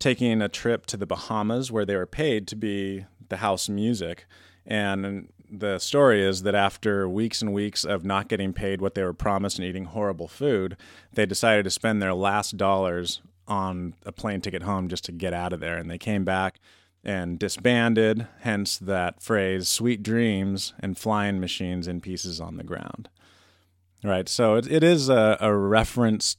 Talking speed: 185 wpm